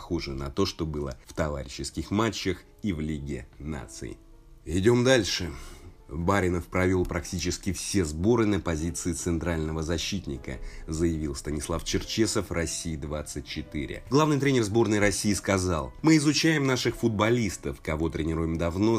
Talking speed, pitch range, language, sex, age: 125 wpm, 80-110 Hz, Russian, male, 30-49